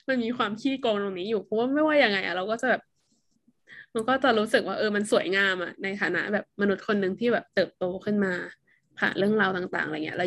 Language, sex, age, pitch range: Thai, female, 10-29, 190-225 Hz